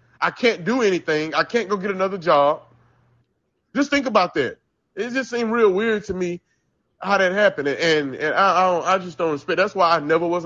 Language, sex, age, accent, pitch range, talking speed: English, male, 30-49, American, 145-195 Hz, 220 wpm